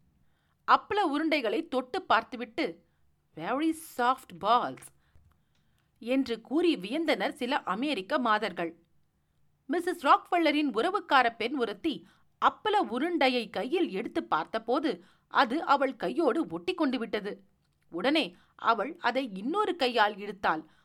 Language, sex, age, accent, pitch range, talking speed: Tamil, female, 40-59, native, 230-330 Hz, 100 wpm